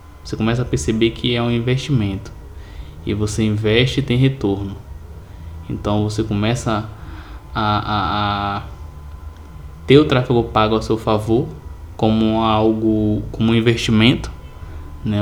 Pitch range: 95-115 Hz